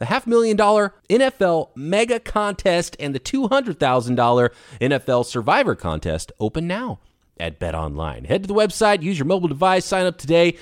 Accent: American